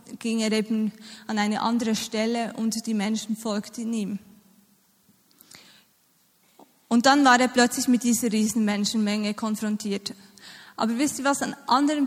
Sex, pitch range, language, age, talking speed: female, 220-250 Hz, German, 20-39, 140 wpm